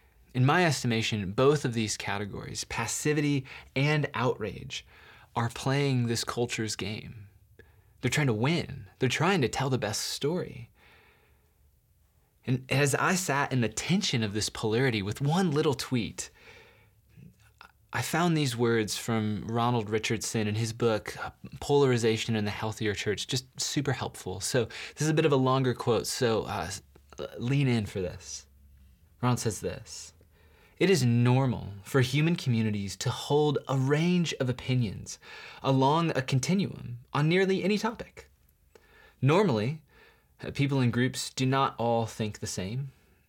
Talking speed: 145 wpm